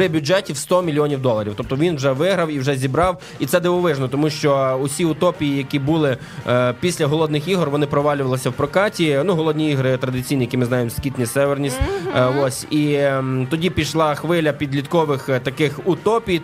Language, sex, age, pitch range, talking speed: Ukrainian, male, 20-39, 130-165 Hz, 170 wpm